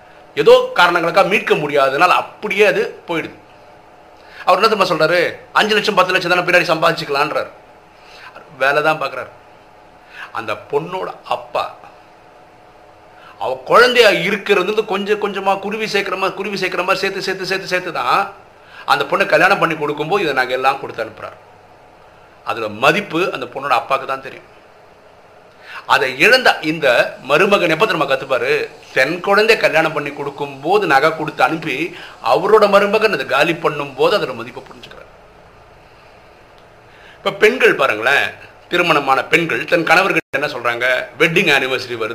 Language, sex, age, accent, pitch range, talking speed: Tamil, male, 50-69, native, 155-210 Hz, 85 wpm